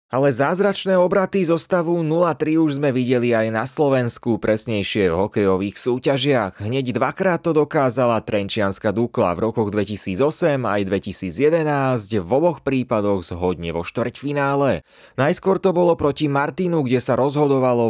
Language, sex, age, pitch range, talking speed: Slovak, male, 30-49, 110-155 Hz, 135 wpm